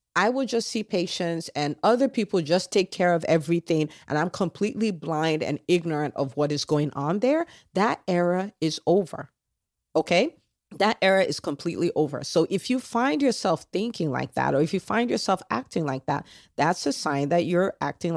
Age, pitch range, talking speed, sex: 40-59, 150-230 Hz, 190 wpm, female